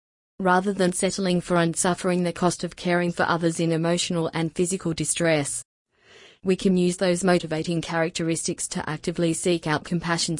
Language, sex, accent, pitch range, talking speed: English, female, Australian, 155-180 Hz, 160 wpm